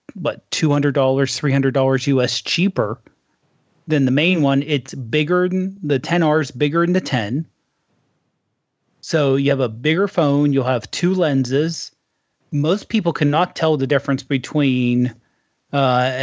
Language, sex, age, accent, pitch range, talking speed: English, male, 30-49, American, 130-155 Hz, 150 wpm